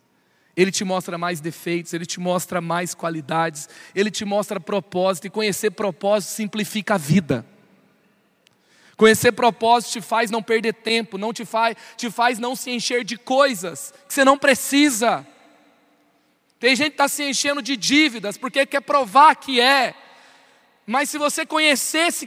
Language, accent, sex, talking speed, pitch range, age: Portuguese, Brazilian, male, 155 wpm, 205-295 Hz, 20-39